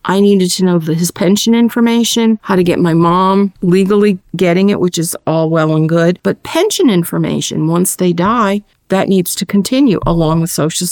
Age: 50-69